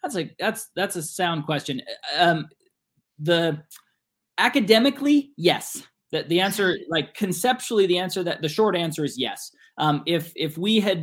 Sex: male